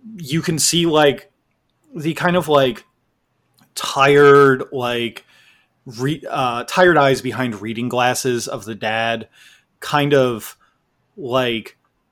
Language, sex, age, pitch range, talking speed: English, male, 30-49, 125-165 Hz, 115 wpm